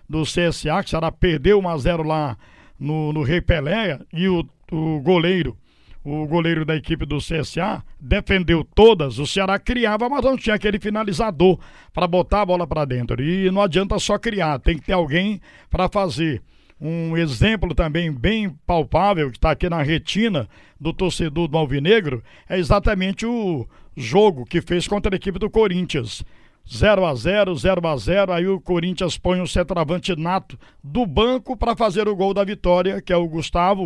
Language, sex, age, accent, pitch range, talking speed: Portuguese, male, 60-79, Brazilian, 160-195 Hz, 185 wpm